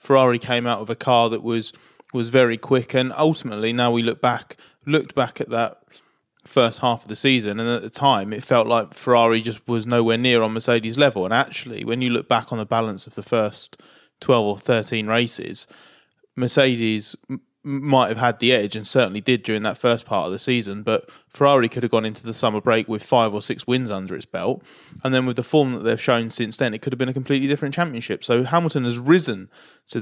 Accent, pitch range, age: British, 115-130 Hz, 20-39